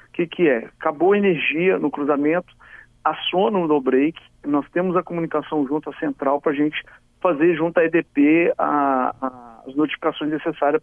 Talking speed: 175 wpm